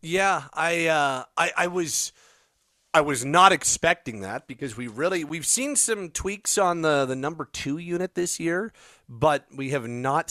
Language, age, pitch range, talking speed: English, 30-49, 125-165 Hz, 175 wpm